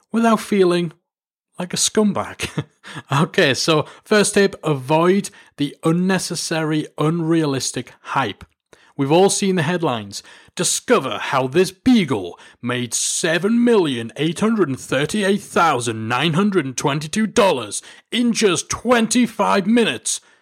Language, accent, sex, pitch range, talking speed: English, British, male, 125-190 Hz, 125 wpm